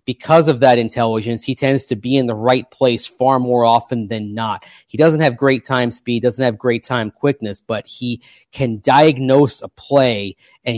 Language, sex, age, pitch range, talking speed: English, male, 30-49, 115-135 Hz, 195 wpm